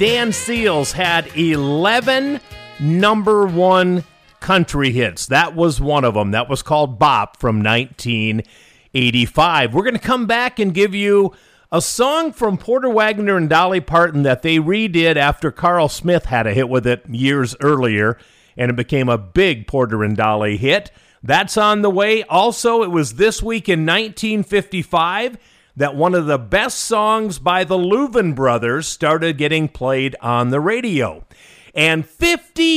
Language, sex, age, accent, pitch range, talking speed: English, male, 50-69, American, 135-210 Hz, 155 wpm